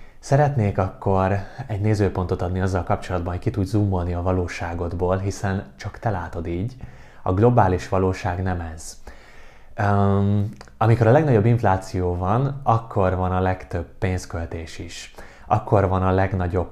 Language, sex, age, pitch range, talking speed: Hungarian, male, 20-39, 90-105 Hz, 145 wpm